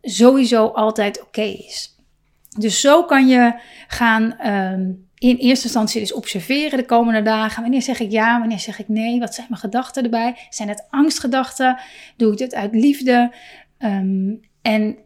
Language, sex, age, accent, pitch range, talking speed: Dutch, female, 30-49, Dutch, 220-265 Hz, 165 wpm